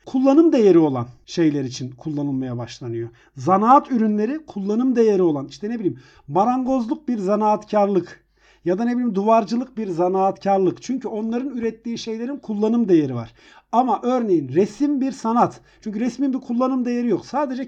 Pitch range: 165-255 Hz